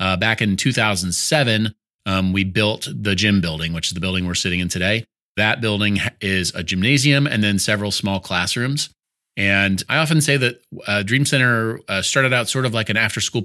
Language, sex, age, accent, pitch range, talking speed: English, male, 30-49, American, 100-120 Hz, 195 wpm